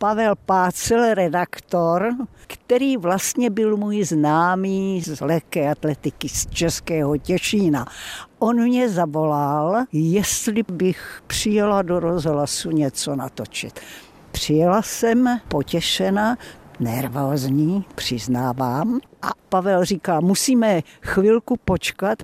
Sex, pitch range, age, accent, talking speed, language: female, 145-200 Hz, 60-79, native, 95 wpm, Czech